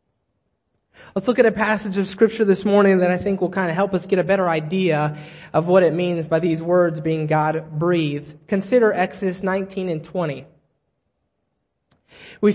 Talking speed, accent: 175 wpm, American